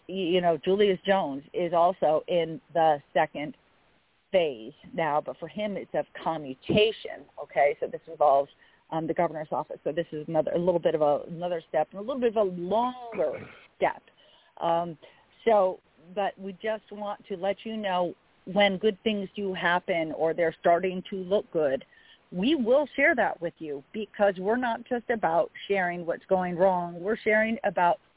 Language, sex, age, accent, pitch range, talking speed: English, female, 40-59, American, 170-215 Hz, 175 wpm